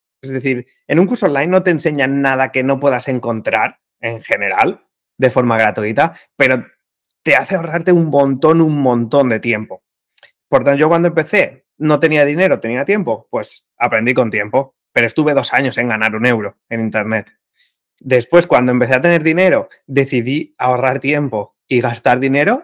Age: 30-49